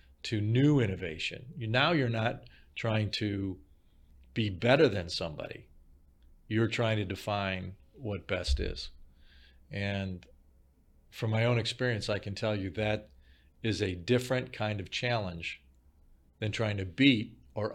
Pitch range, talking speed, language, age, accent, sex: 75-110 Hz, 135 wpm, English, 40-59, American, male